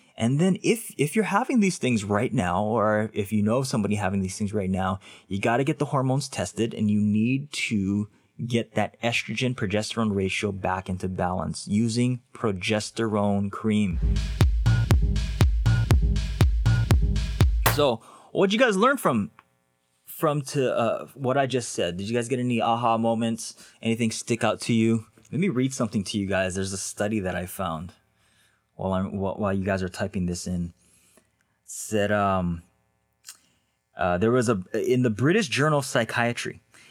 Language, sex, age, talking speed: English, male, 20-39, 165 wpm